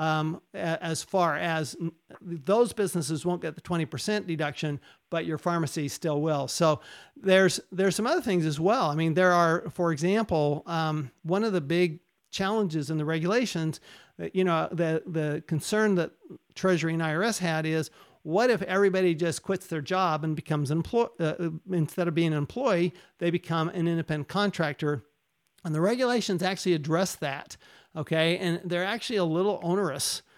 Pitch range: 155-185 Hz